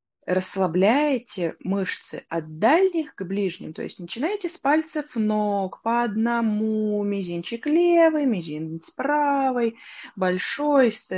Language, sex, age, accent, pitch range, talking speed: Russian, female, 20-39, native, 170-235 Hz, 100 wpm